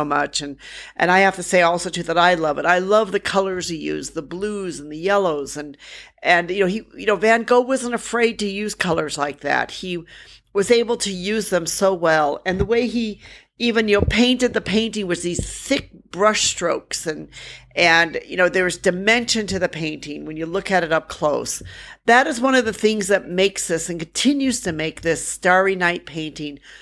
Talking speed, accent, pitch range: 215 wpm, American, 160-210 Hz